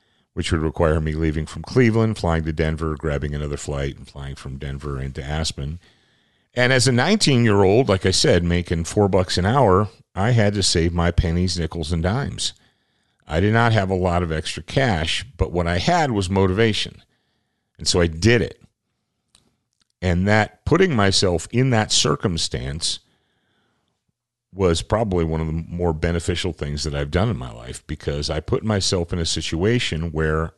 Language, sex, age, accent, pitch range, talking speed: English, male, 50-69, American, 80-105 Hz, 180 wpm